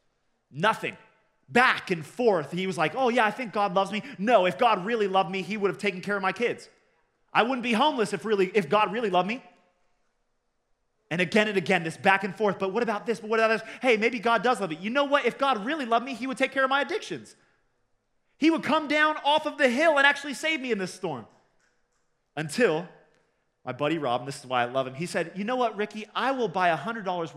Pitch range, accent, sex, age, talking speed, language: 185-280 Hz, American, male, 30-49, 245 wpm, English